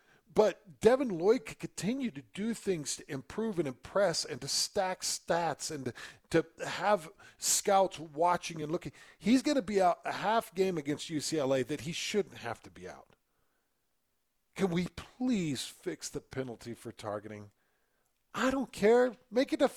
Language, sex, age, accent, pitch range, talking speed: English, male, 40-59, American, 135-210 Hz, 165 wpm